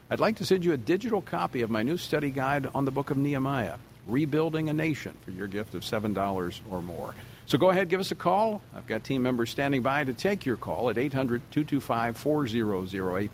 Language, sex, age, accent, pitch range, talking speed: English, male, 50-69, American, 110-140 Hz, 210 wpm